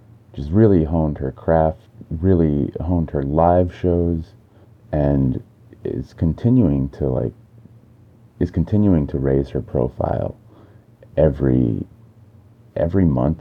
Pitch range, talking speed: 70-105 Hz, 105 wpm